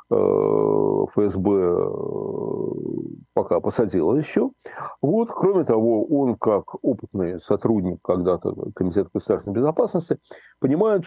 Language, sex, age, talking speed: Russian, male, 40-59, 85 wpm